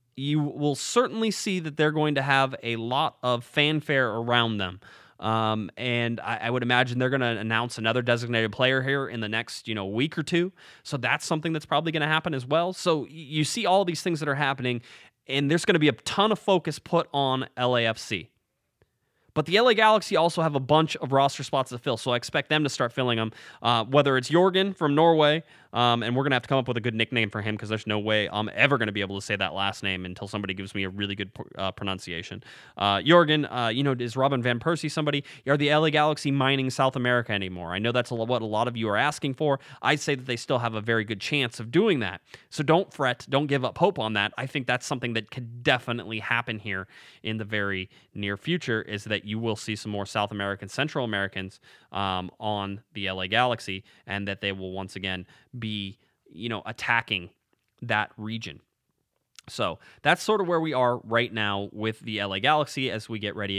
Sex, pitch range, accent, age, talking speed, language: male, 105-145 Hz, American, 20-39, 230 wpm, English